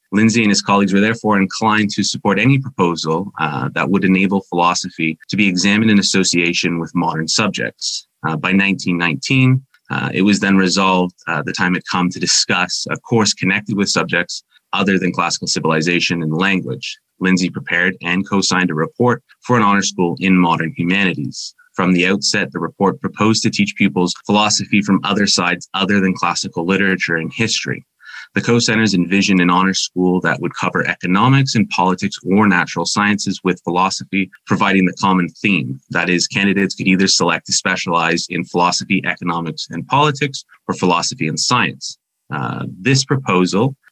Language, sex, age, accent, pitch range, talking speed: English, male, 30-49, American, 90-105 Hz, 170 wpm